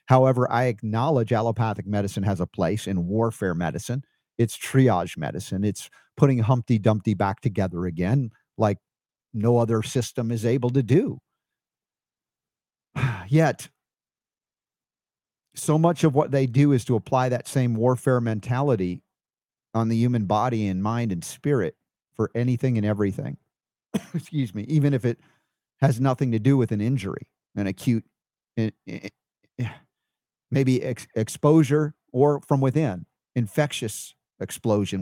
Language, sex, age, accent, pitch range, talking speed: English, male, 50-69, American, 110-140 Hz, 135 wpm